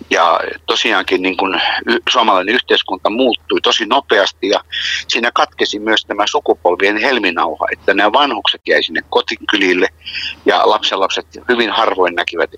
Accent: native